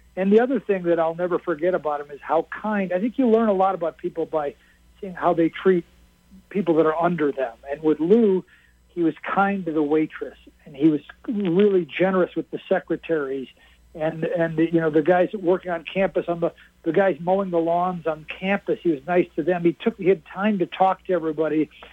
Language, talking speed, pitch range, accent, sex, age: English, 220 wpm, 160-195 Hz, American, male, 60-79